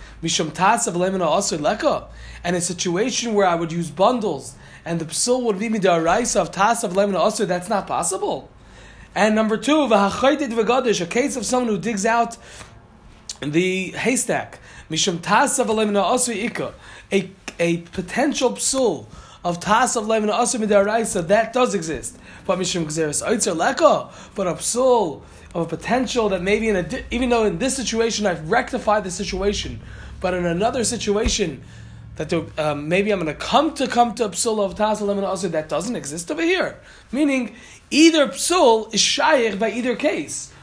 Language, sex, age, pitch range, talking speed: Italian, male, 20-39, 175-240 Hz, 135 wpm